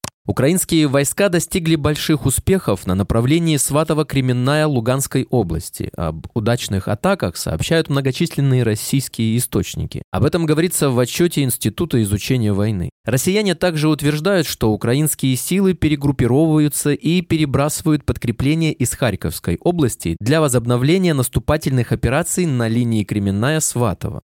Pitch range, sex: 115-160 Hz, male